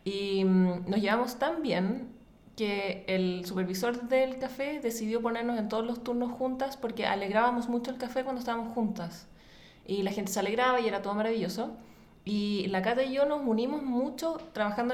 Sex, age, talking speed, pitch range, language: female, 30-49, 175 wpm, 200-245 Hz, English